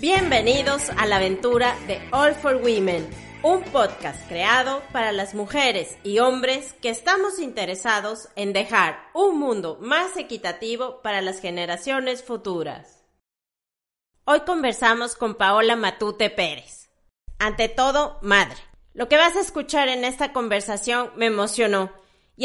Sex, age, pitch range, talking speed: female, 30-49, 215-270 Hz, 130 wpm